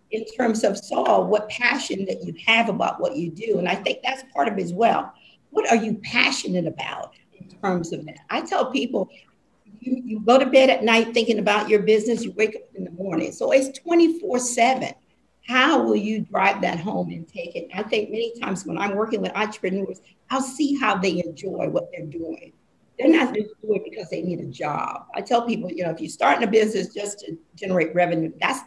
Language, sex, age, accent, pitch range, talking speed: English, female, 50-69, American, 180-240 Hz, 220 wpm